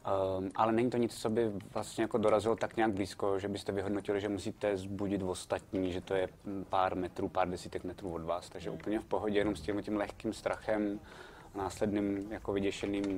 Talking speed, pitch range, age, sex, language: 200 wpm, 95-110 Hz, 20-39, male, Czech